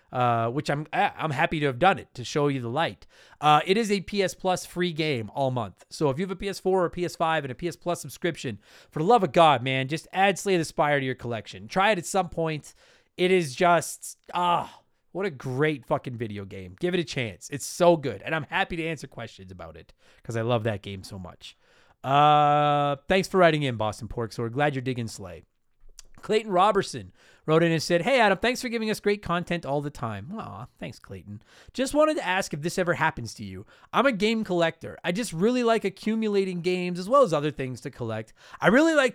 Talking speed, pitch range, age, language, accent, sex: 235 wpm, 130-190 Hz, 30-49, English, American, male